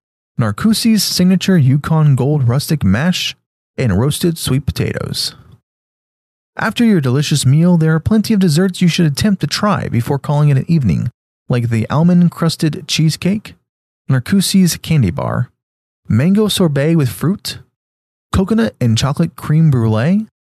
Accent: American